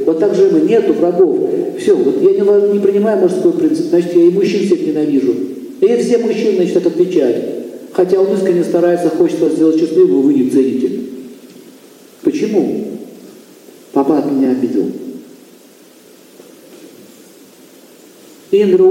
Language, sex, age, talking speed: Russian, male, 50-69, 125 wpm